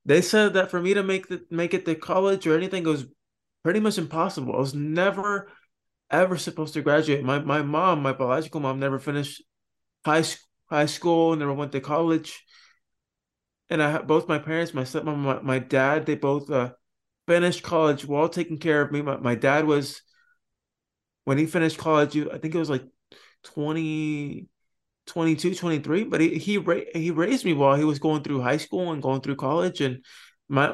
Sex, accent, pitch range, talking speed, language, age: male, American, 140-175 Hz, 190 wpm, English, 20-39